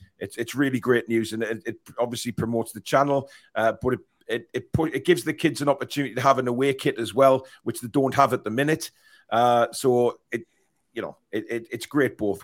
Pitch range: 115-140 Hz